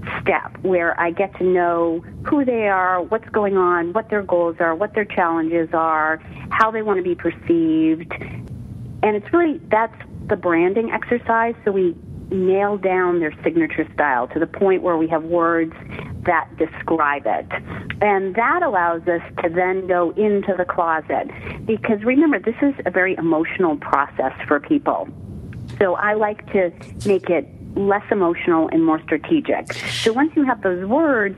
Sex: female